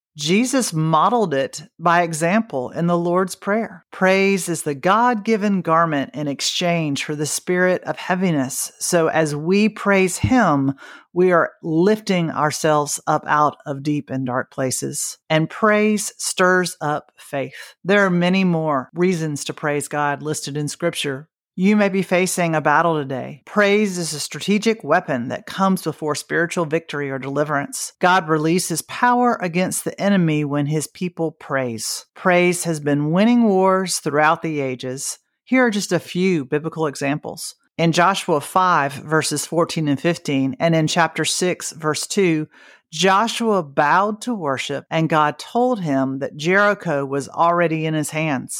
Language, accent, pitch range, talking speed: English, American, 150-185 Hz, 155 wpm